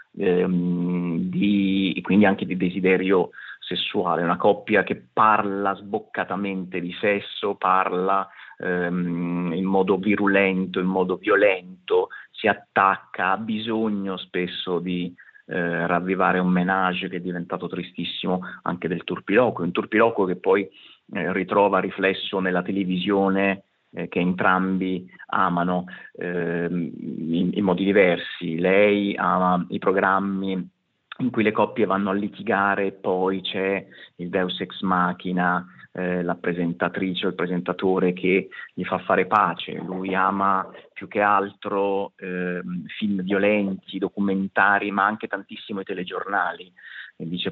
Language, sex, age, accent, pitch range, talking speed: Italian, male, 30-49, native, 90-100 Hz, 125 wpm